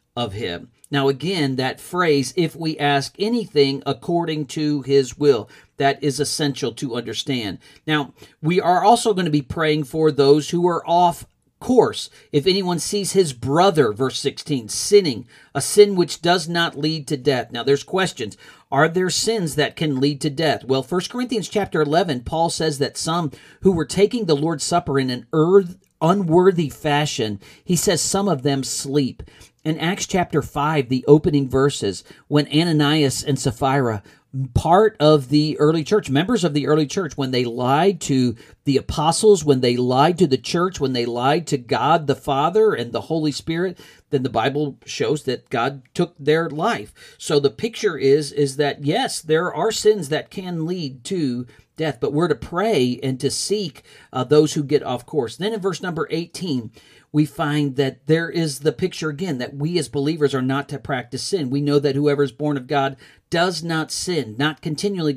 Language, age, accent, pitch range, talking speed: English, 50-69, American, 135-170 Hz, 185 wpm